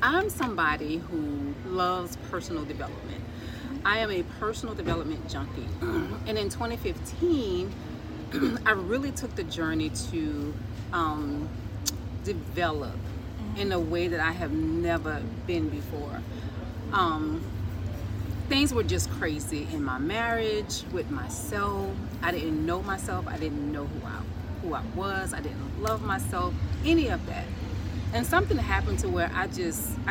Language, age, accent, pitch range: English, 30-49, American, 90-105 Hz